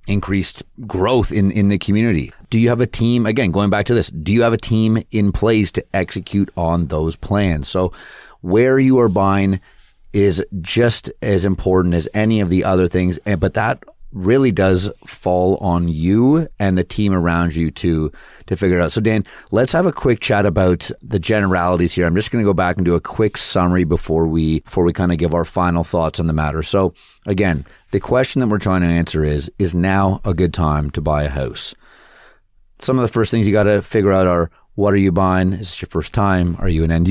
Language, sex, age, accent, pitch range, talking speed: English, male, 30-49, American, 85-105 Hz, 225 wpm